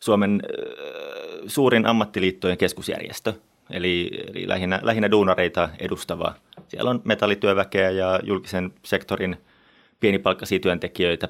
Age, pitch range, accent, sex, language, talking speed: 30-49, 90-115 Hz, native, male, Finnish, 100 wpm